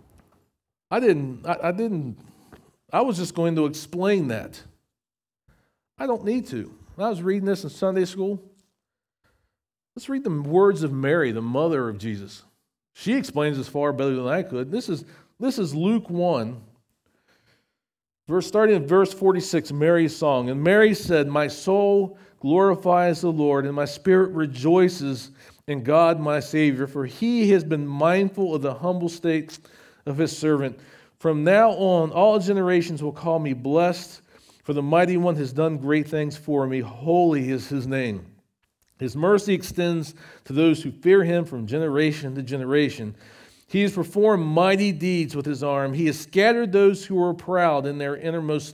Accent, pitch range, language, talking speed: American, 140-190 Hz, English, 165 wpm